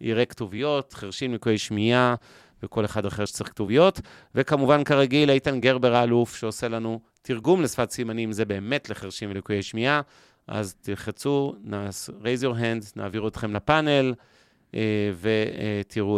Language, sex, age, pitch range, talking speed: Hebrew, male, 30-49, 115-135 Hz, 130 wpm